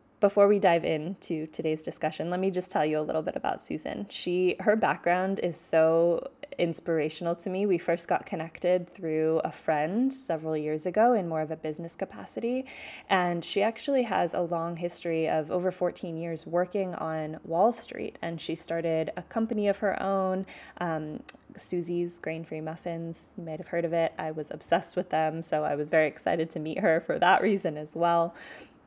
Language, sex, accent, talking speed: English, female, American, 190 wpm